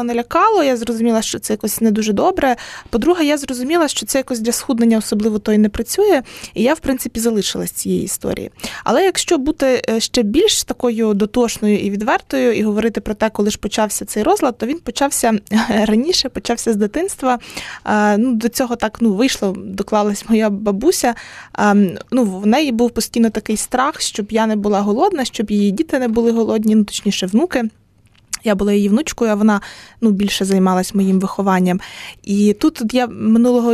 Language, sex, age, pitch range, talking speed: Ukrainian, female, 20-39, 215-255 Hz, 180 wpm